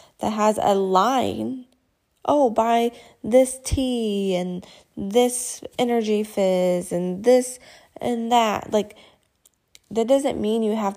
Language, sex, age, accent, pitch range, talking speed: English, female, 20-39, American, 190-230 Hz, 120 wpm